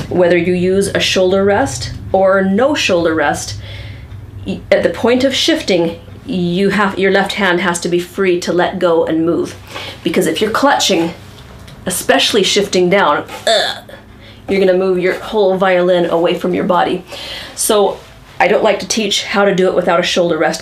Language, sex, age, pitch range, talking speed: English, female, 30-49, 175-195 Hz, 180 wpm